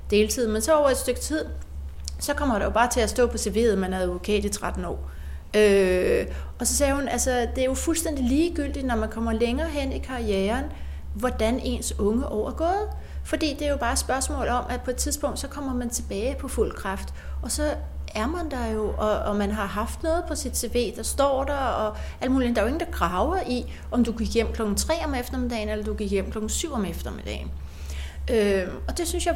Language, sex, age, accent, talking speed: Danish, female, 30-49, native, 235 wpm